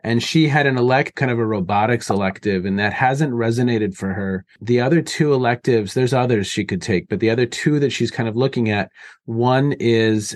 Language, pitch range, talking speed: English, 110-140 Hz, 215 wpm